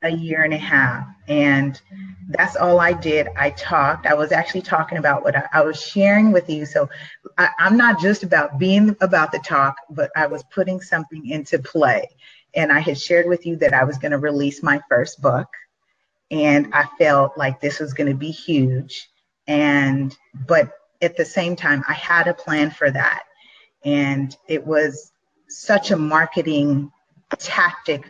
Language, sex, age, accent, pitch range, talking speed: English, female, 30-49, American, 140-175 Hz, 175 wpm